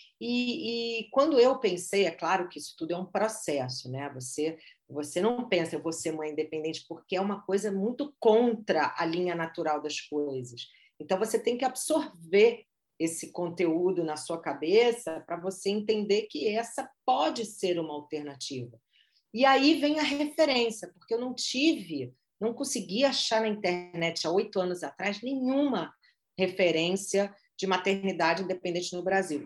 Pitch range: 160-230 Hz